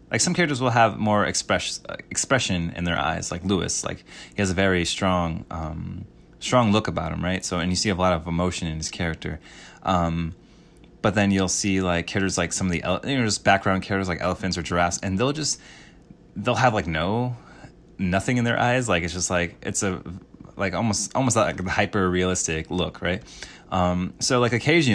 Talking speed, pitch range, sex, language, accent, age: 205 wpm, 85-100 Hz, male, English, American, 20-39